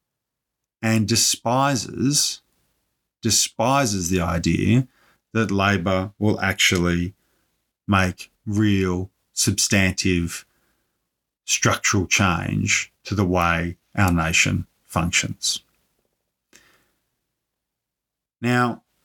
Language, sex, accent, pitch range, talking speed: English, male, Australian, 95-115 Hz, 65 wpm